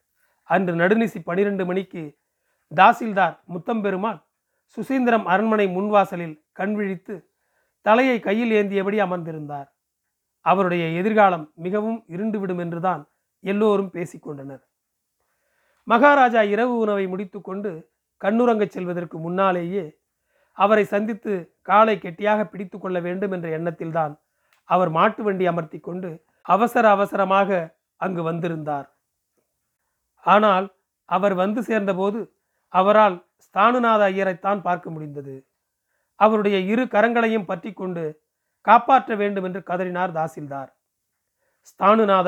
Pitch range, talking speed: 175-215 Hz, 90 wpm